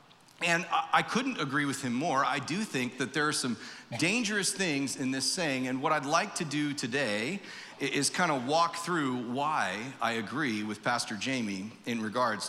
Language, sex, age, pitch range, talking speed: English, male, 40-59, 125-160 Hz, 185 wpm